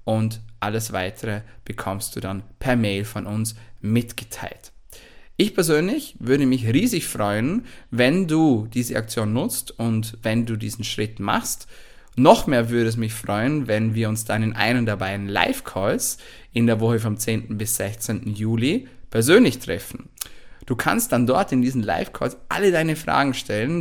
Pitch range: 110-130 Hz